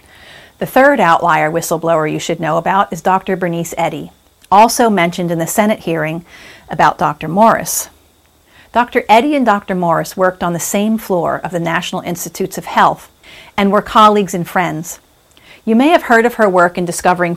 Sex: female